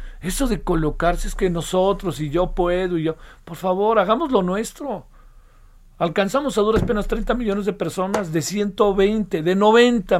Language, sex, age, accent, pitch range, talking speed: Spanish, male, 50-69, Mexican, 145-200 Hz, 165 wpm